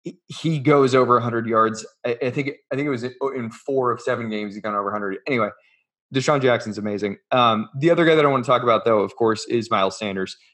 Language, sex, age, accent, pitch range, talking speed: English, male, 20-39, American, 115-140 Hz, 230 wpm